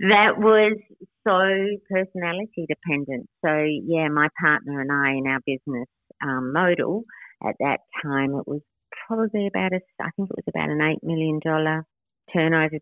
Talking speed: 150 wpm